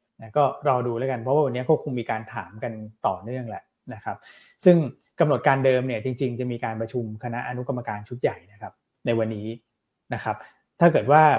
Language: Thai